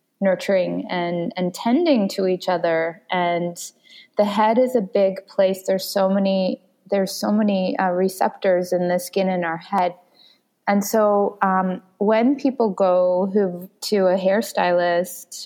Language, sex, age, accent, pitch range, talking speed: English, female, 20-39, American, 180-205 Hz, 145 wpm